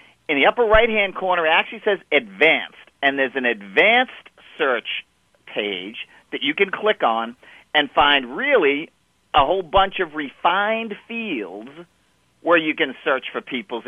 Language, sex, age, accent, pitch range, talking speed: English, male, 40-59, American, 120-195 Hz, 150 wpm